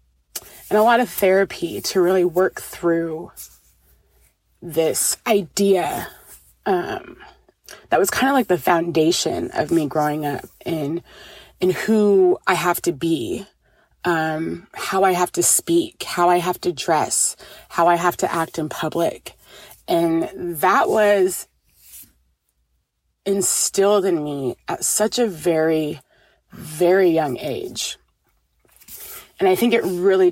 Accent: American